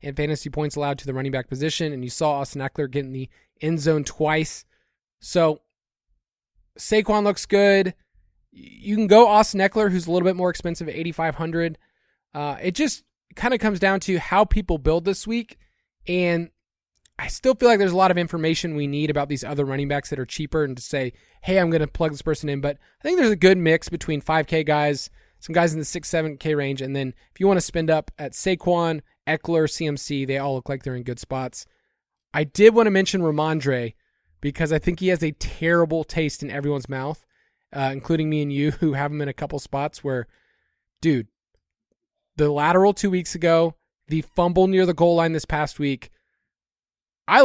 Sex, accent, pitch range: male, American, 145-180 Hz